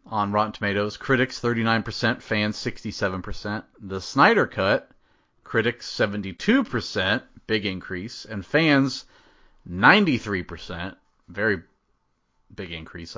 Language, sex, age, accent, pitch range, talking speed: English, male, 30-49, American, 90-125 Hz, 90 wpm